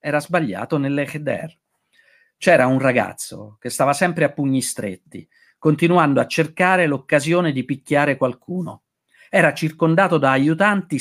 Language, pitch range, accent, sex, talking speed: Italian, 130-175 Hz, native, male, 125 wpm